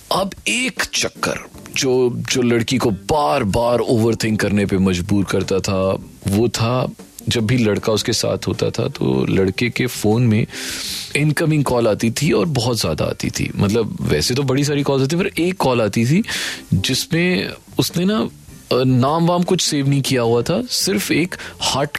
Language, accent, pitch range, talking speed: Hindi, native, 100-145 Hz, 175 wpm